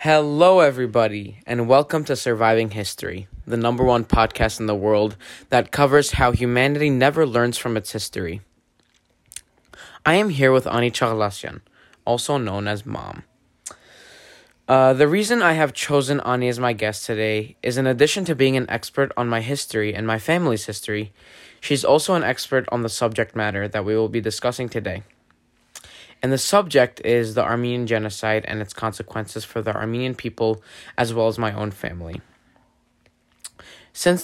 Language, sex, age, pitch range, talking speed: English, male, 10-29, 110-130 Hz, 165 wpm